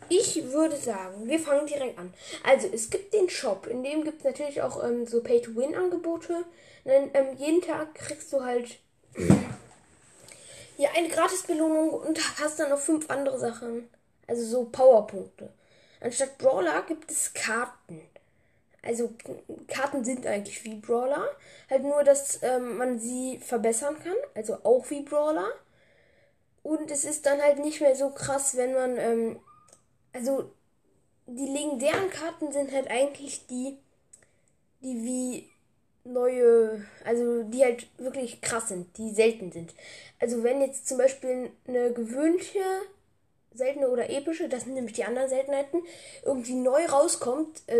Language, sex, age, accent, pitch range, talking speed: German, female, 10-29, German, 240-295 Hz, 145 wpm